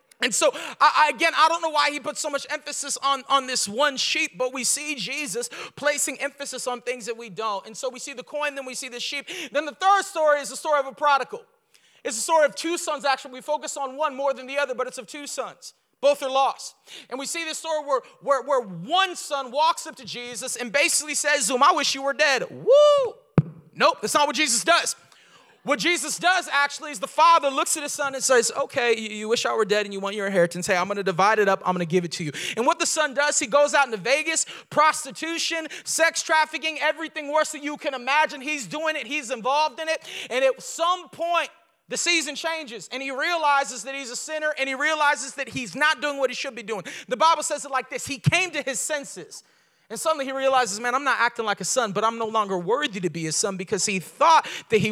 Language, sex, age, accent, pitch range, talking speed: English, male, 30-49, American, 245-310 Hz, 250 wpm